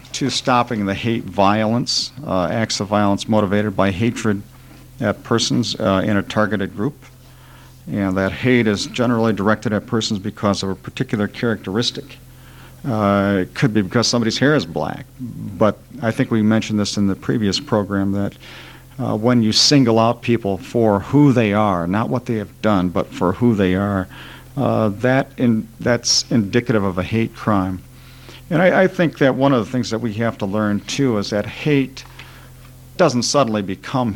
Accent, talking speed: American, 180 wpm